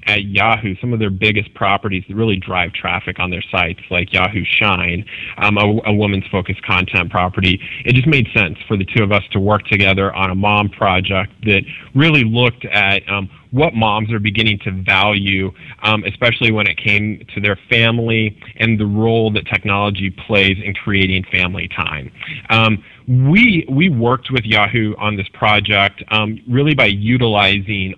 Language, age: English, 30-49